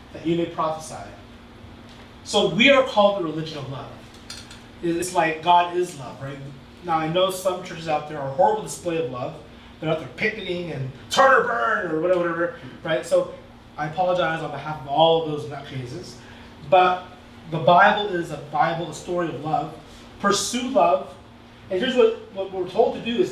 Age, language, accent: 30-49, English, American